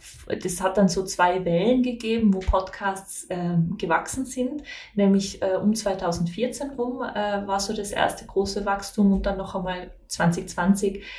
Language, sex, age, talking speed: German, female, 20-39, 155 wpm